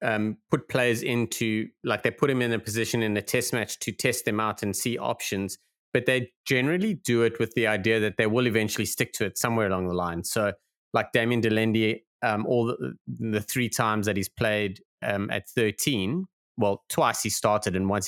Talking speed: 210 wpm